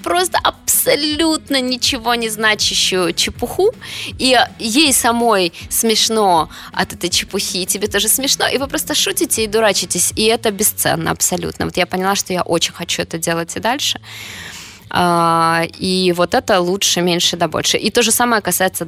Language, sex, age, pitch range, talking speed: Russian, female, 20-39, 165-205 Hz, 160 wpm